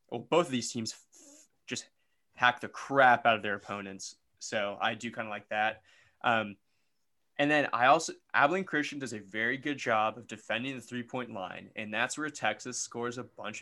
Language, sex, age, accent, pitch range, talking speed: English, male, 20-39, American, 110-130 Hz, 195 wpm